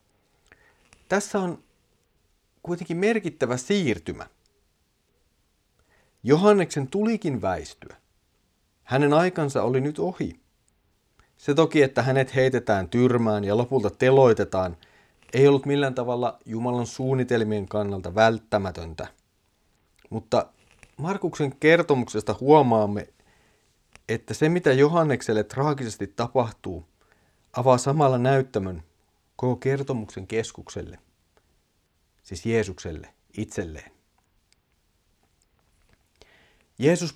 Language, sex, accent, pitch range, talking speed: Finnish, male, native, 100-135 Hz, 80 wpm